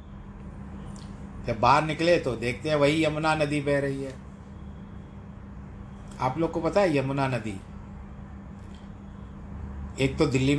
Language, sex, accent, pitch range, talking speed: Hindi, male, native, 100-145 Hz, 125 wpm